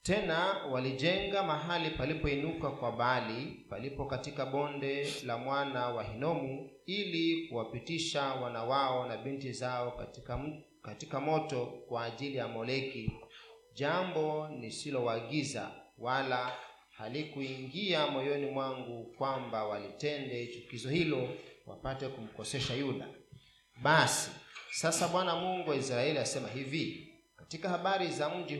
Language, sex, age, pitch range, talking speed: Swahili, male, 40-59, 125-155 Hz, 115 wpm